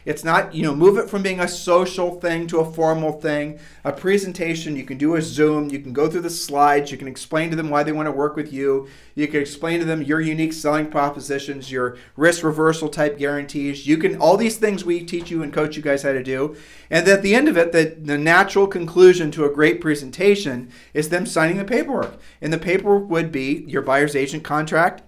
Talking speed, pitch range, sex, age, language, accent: 230 wpm, 145-175 Hz, male, 40-59, English, American